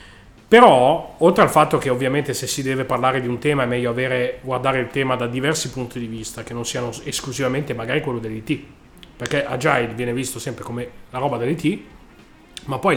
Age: 30-49